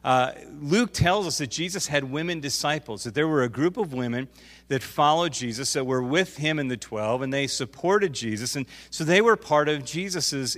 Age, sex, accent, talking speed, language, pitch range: 40-59, male, American, 210 wpm, English, 125-155 Hz